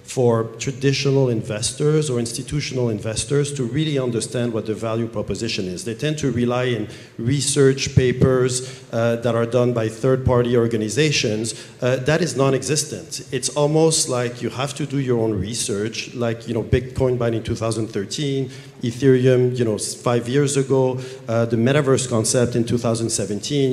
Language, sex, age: English, male, 50-69